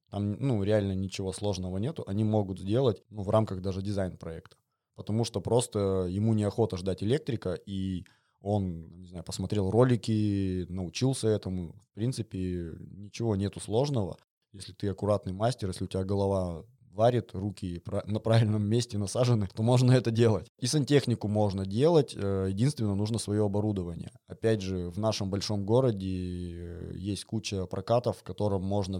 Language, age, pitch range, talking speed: Russian, 20-39, 95-110 Hz, 150 wpm